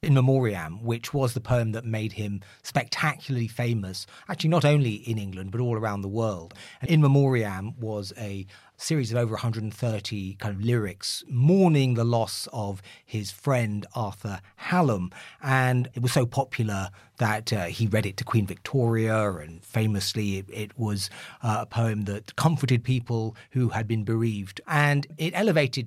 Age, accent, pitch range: 40-59, British, 110-140 Hz